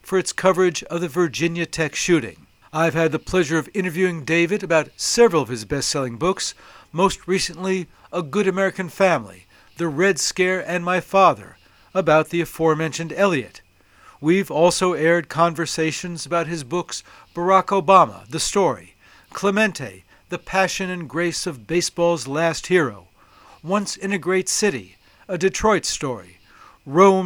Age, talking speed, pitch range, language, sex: 60-79, 145 wpm, 160-190 Hz, English, male